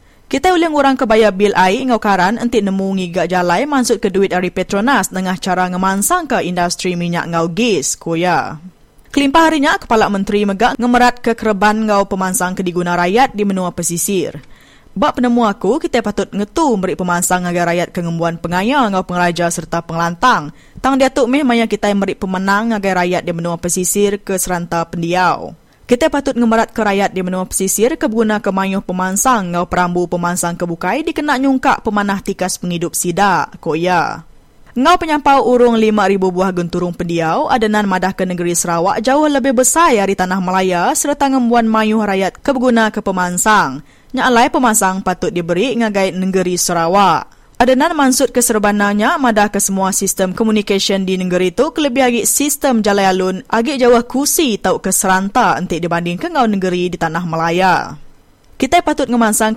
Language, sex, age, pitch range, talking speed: English, female, 20-39, 180-240 Hz, 160 wpm